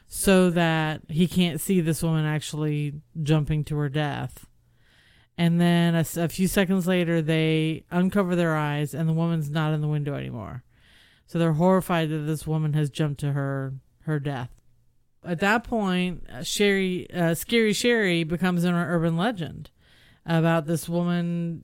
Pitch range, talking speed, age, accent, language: 155-180 Hz, 155 wpm, 40-59, American, English